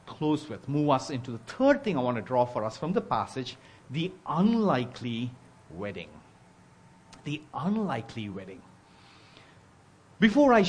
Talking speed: 140 wpm